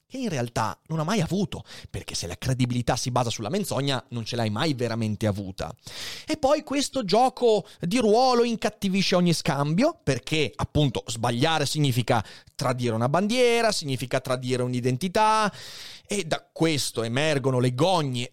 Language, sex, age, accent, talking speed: Italian, male, 30-49, native, 150 wpm